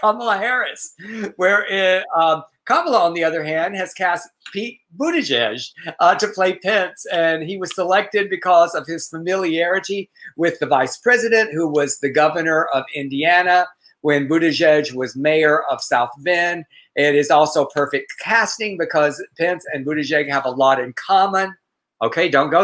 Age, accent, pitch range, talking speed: 50-69, American, 155-195 Hz, 155 wpm